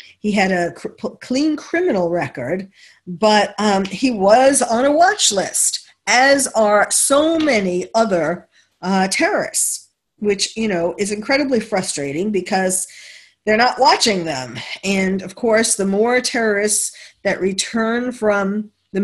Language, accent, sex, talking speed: English, American, female, 130 wpm